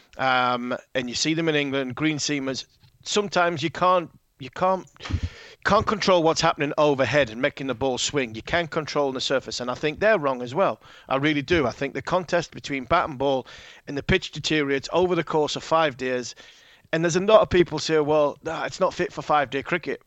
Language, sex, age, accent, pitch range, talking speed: English, male, 40-59, British, 135-160 Hz, 220 wpm